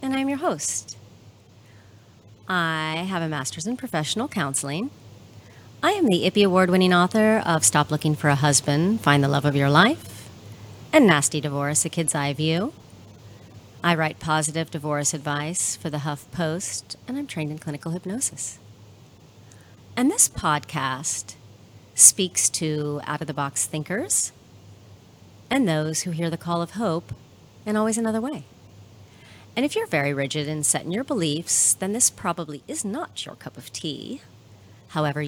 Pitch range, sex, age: 125-185 Hz, female, 40-59